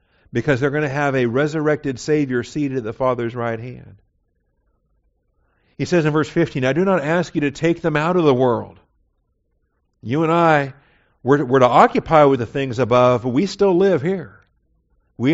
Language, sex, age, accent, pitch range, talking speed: English, male, 50-69, American, 105-145 Hz, 190 wpm